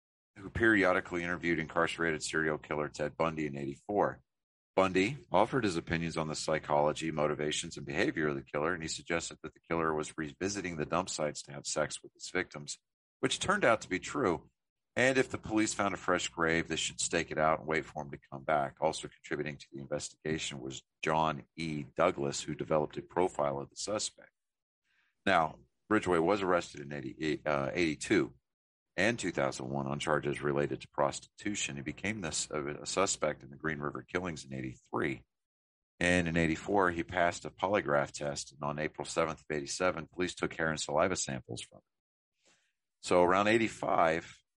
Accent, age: American, 40-59